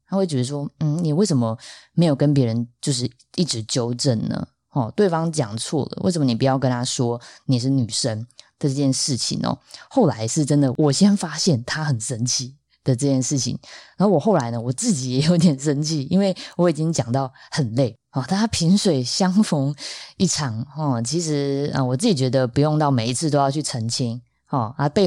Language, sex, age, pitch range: Chinese, female, 20-39, 125-155 Hz